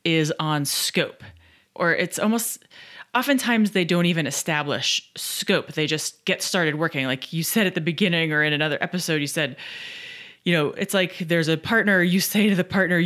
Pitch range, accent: 145-185 Hz, American